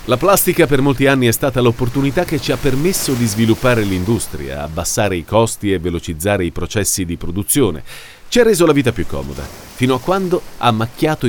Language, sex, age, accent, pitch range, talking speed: Italian, male, 40-59, native, 105-150 Hz, 190 wpm